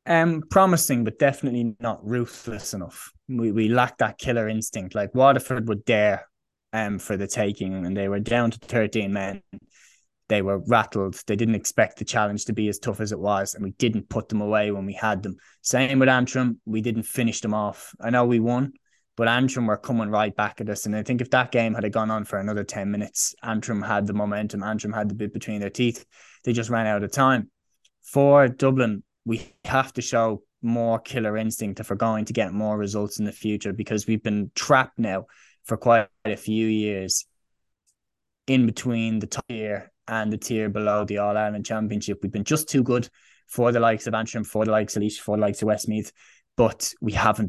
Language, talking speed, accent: English, 210 wpm, Irish